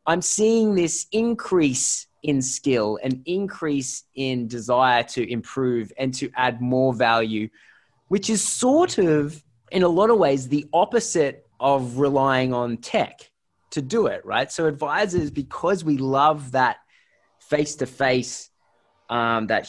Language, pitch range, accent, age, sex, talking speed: English, 130-165 Hz, Australian, 20-39, male, 145 wpm